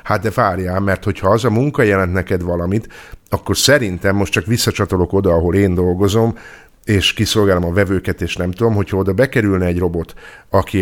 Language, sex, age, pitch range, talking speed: Hungarian, male, 50-69, 90-110 Hz, 185 wpm